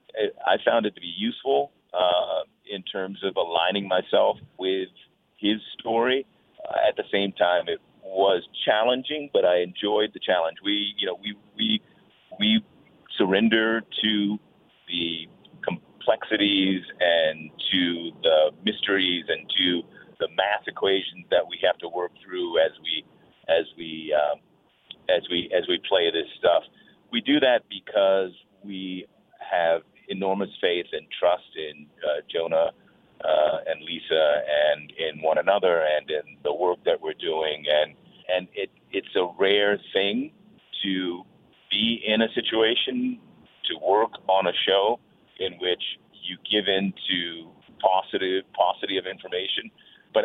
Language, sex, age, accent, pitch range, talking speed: English, male, 40-59, American, 90-135 Hz, 145 wpm